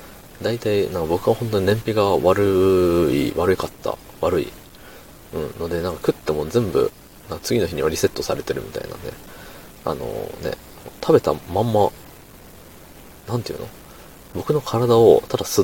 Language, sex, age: Japanese, male, 40-59